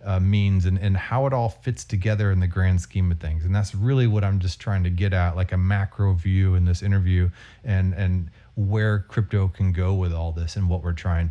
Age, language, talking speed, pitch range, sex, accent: 30-49, English, 240 wpm, 95-115 Hz, male, American